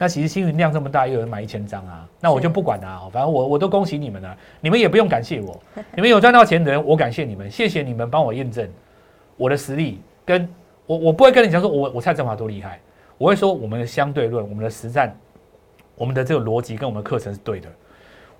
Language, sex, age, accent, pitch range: Chinese, male, 30-49, native, 110-180 Hz